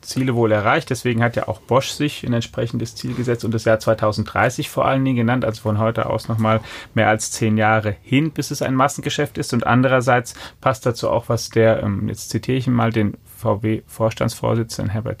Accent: German